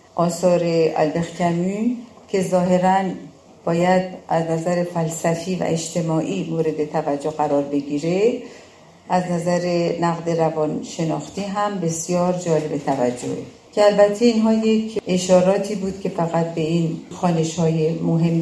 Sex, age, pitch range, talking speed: female, 50-69, 165-205 Hz, 120 wpm